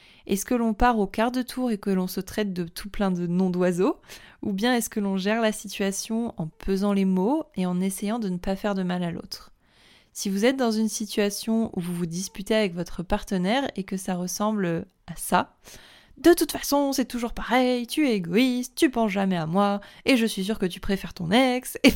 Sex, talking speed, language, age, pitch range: female, 230 wpm, French, 20-39, 195-240 Hz